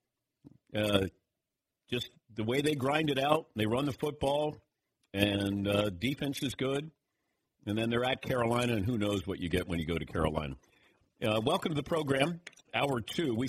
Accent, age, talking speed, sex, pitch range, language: American, 50-69, 180 wpm, male, 100-135 Hz, English